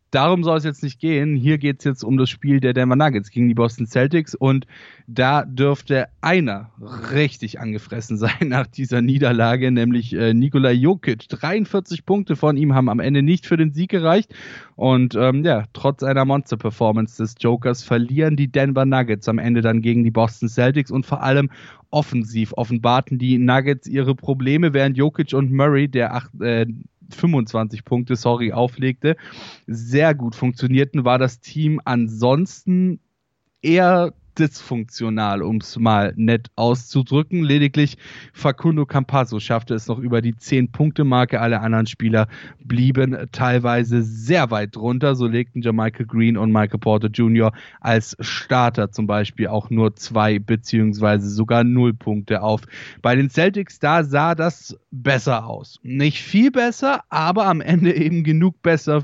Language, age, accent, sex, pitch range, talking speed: German, 10-29, German, male, 115-150 Hz, 155 wpm